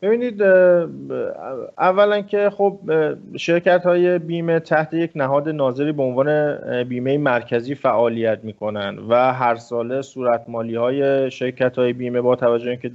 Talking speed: 145 wpm